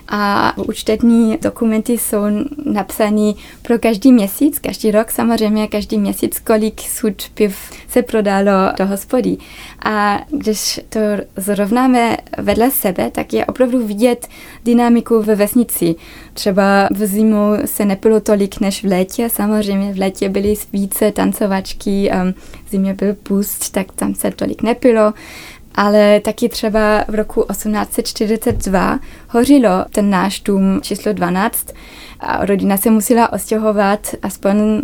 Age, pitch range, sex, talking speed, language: 20-39, 200-230 Hz, female, 125 wpm, Czech